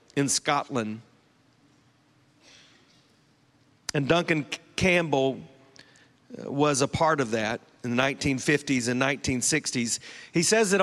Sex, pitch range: male, 125-155 Hz